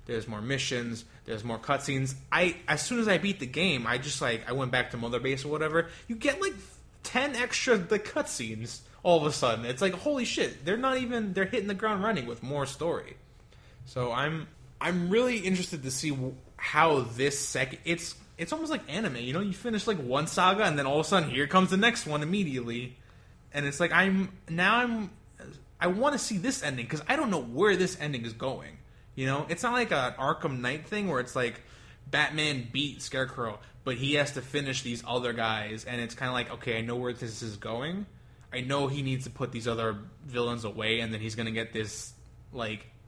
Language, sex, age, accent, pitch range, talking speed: English, male, 20-39, American, 120-180 Hz, 220 wpm